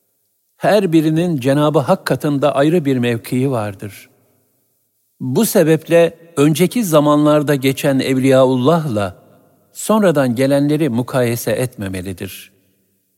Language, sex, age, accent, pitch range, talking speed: Turkish, male, 60-79, native, 105-150 Hz, 85 wpm